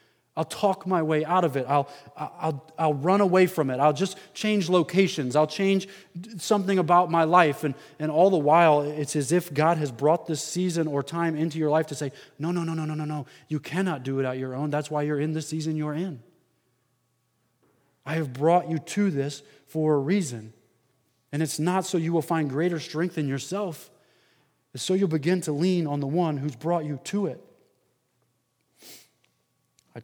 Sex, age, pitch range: male, 20-39, 125-160 Hz